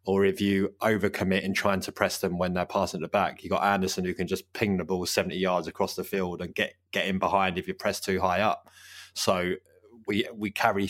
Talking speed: 235 wpm